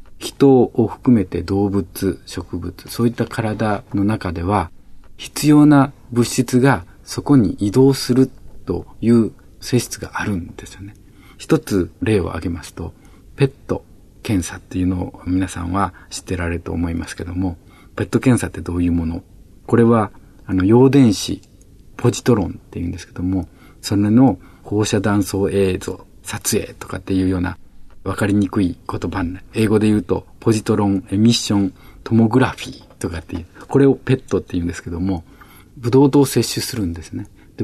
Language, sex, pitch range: Japanese, male, 95-120 Hz